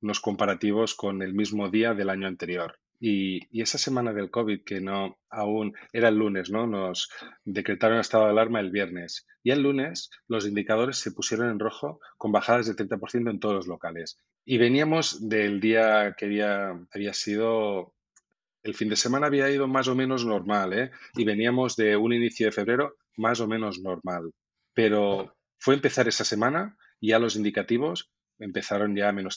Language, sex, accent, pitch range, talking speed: Spanish, male, Spanish, 100-115 Hz, 185 wpm